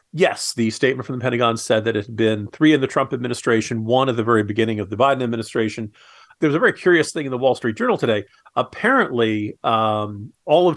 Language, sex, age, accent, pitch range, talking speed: English, male, 40-59, American, 110-140 Hz, 230 wpm